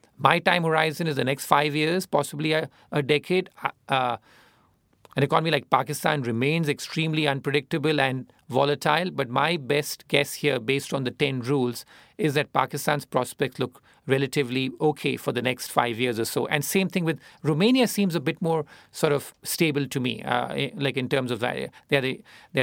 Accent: Indian